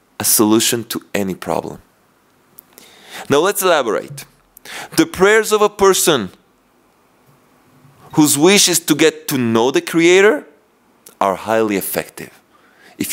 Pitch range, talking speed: 115-160 Hz, 115 wpm